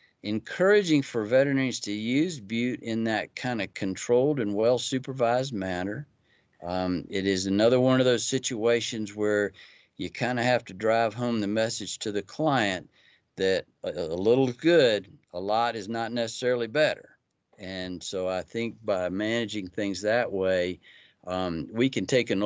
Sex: male